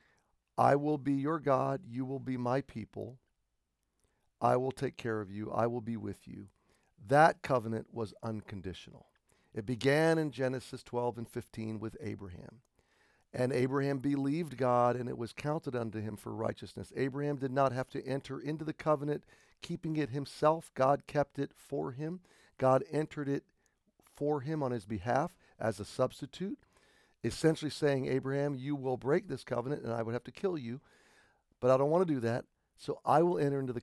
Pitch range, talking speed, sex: 115-145 Hz, 180 wpm, male